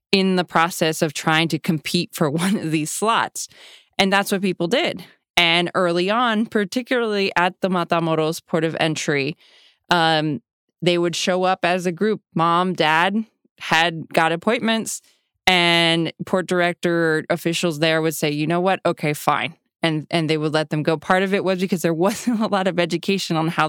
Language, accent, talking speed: English, American, 180 wpm